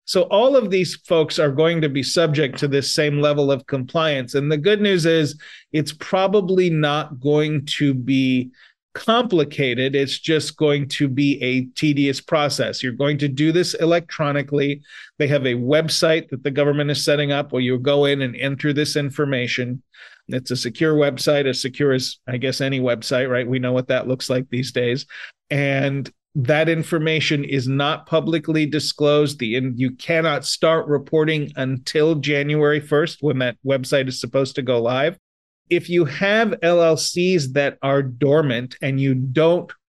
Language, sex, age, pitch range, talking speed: English, male, 40-59, 135-155 Hz, 170 wpm